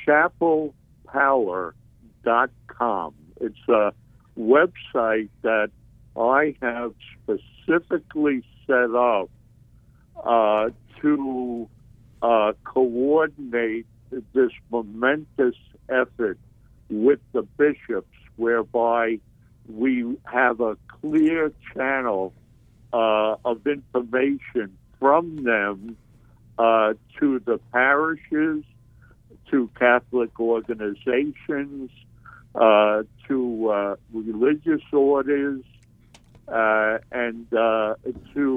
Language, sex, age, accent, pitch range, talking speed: English, male, 60-79, American, 115-135 Hz, 75 wpm